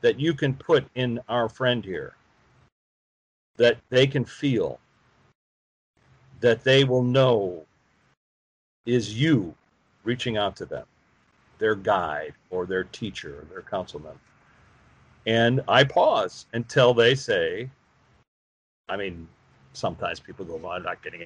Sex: male